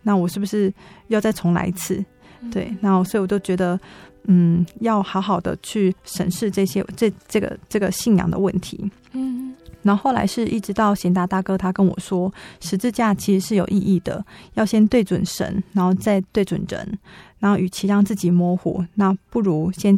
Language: Chinese